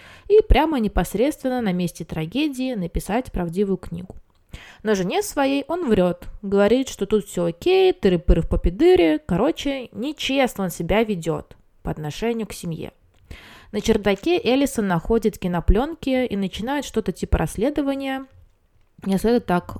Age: 20-39